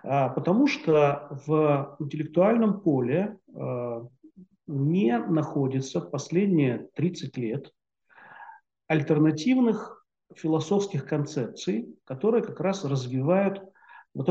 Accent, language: native, Russian